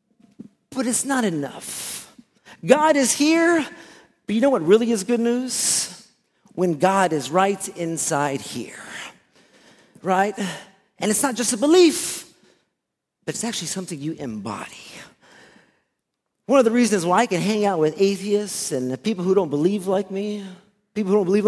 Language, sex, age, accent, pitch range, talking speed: English, male, 40-59, American, 180-230 Hz, 155 wpm